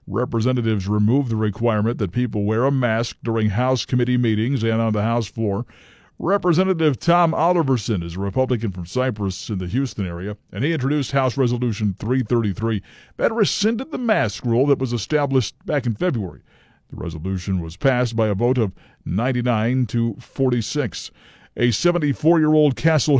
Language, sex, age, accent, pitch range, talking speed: English, male, 50-69, American, 105-135 Hz, 160 wpm